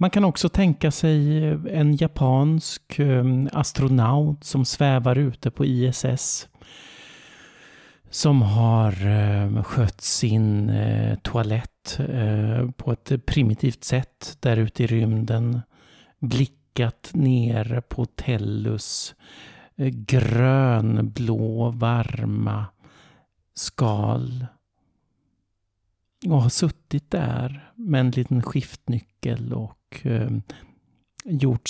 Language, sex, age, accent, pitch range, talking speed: Swedish, male, 50-69, native, 110-135 Hz, 85 wpm